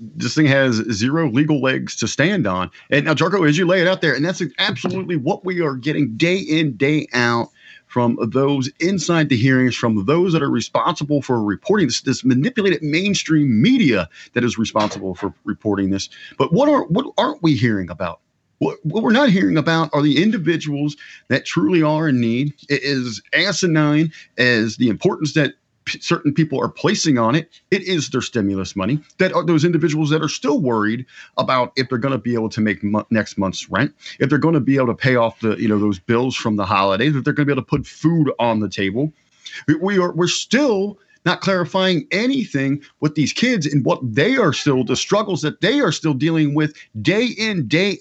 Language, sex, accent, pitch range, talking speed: English, male, American, 120-165 Hz, 210 wpm